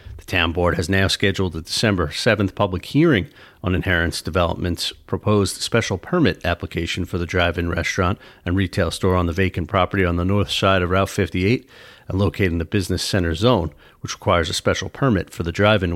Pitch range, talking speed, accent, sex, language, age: 90-115 Hz, 190 wpm, American, male, English, 40-59